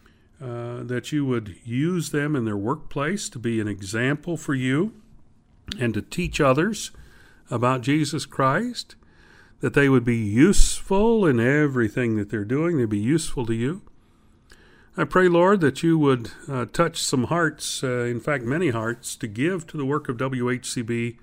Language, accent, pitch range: English, American, 115-150 Hz